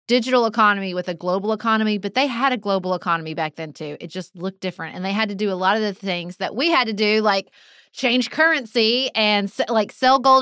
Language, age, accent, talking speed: English, 20-39, American, 235 wpm